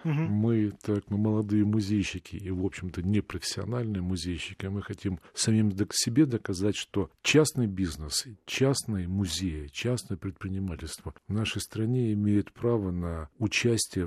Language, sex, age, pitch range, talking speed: Russian, male, 50-69, 90-110 Hz, 130 wpm